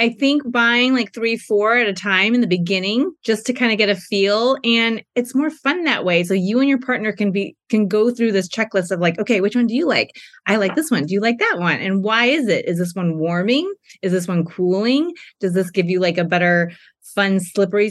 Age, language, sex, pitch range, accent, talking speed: 20-39, English, female, 180-225 Hz, American, 250 wpm